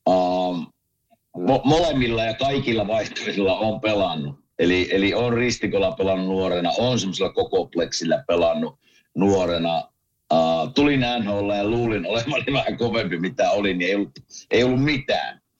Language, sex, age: Finnish, male, 60-79